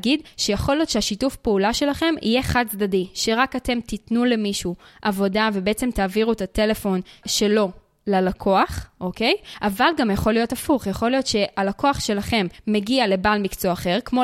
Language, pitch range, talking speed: Hebrew, 205-250 Hz, 145 wpm